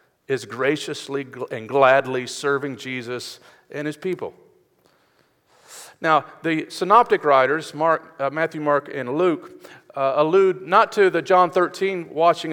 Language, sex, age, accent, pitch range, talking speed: English, male, 50-69, American, 145-190 Hz, 130 wpm